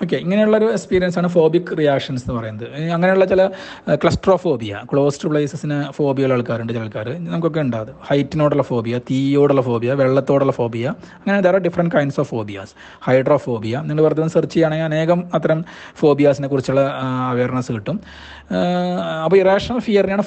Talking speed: 140 wpm